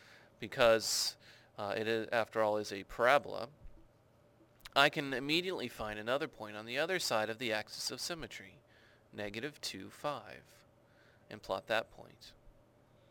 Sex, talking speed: male, 135 wpm